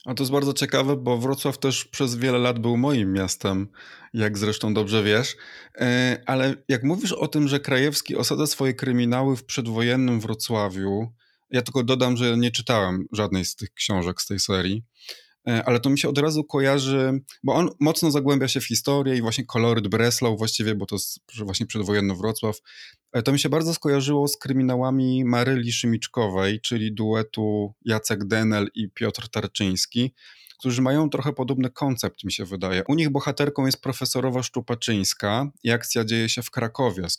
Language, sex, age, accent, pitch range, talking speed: Polish, male, 20-39, native, 110-135 Hz, 170 wpm